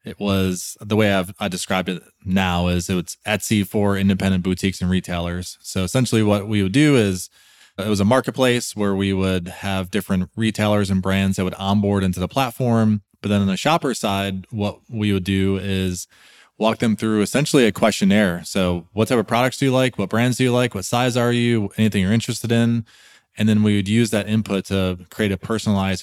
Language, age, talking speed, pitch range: English, 20-39, 210 wpm, 95-110 Hz